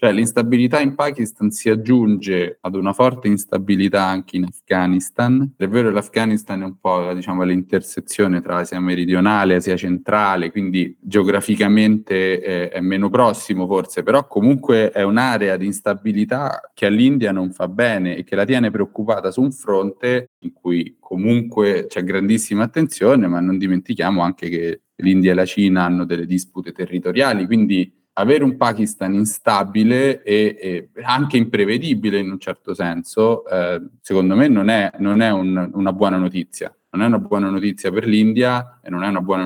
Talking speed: 165 wpm